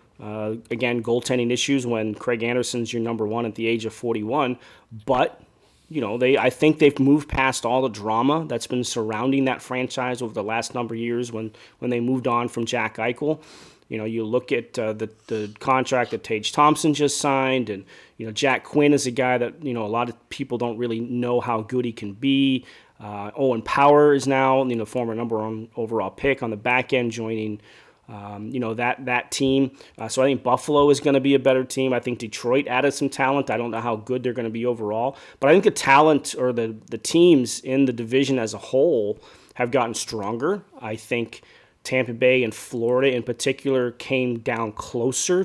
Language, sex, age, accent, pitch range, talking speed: English, male, 30-49, American, 115-135 Hz, 215 wpm